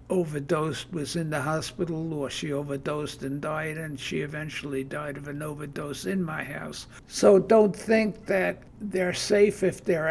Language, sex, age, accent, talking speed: English, male, 60-79, American, 165 wpm